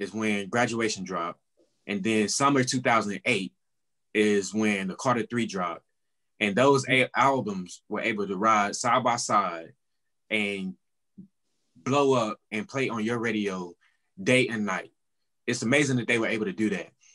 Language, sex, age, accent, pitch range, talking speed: English, male, 20-39, American, 110-140 Hz, 160 wpm